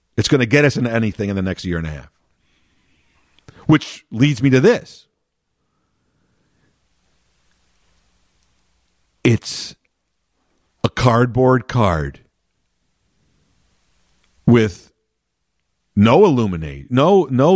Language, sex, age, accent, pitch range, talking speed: English, male, 50-69, American, 95-150 Hz, 95 wpm